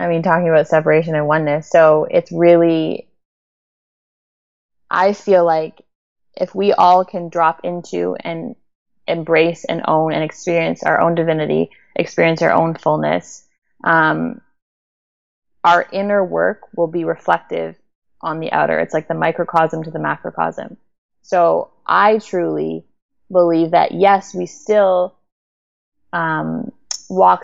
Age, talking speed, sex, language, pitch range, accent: 20-39, 130 wpm, female, English, 155-180 Hz, American